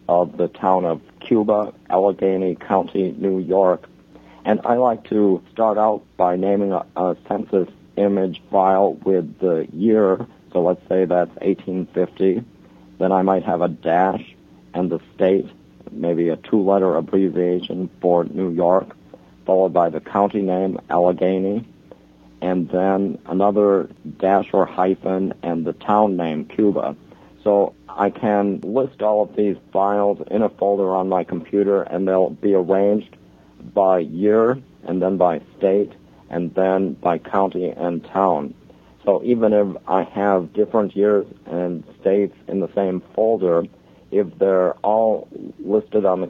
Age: 60-79